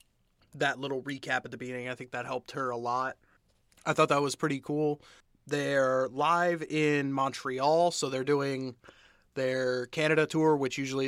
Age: 30-49